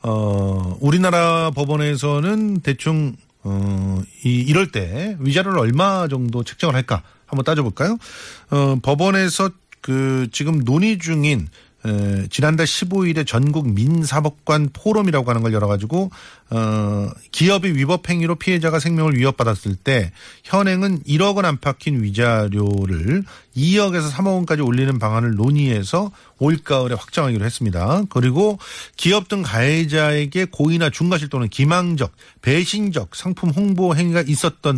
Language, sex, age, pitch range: Korean, male, 40-59, 125-180 Hz